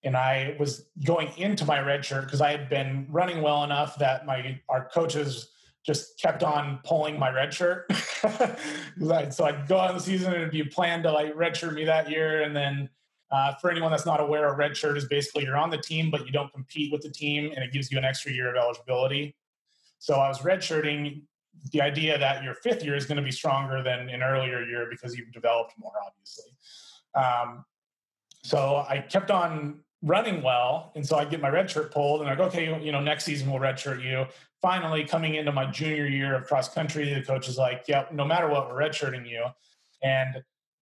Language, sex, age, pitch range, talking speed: English, male, 30-49, 130-155 Hz, 215 wpm